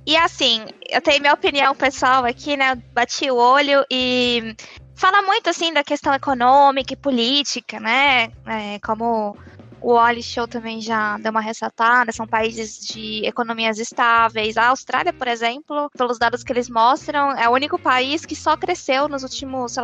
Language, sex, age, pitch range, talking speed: Portuguese, female, 20-39, 235-290 Hz, 170 wpm